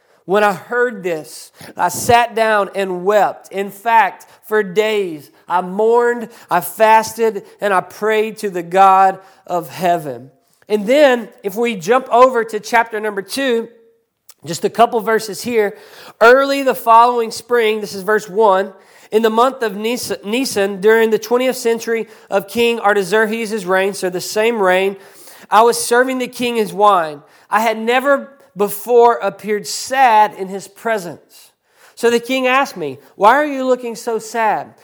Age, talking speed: 40-59, 160 wpm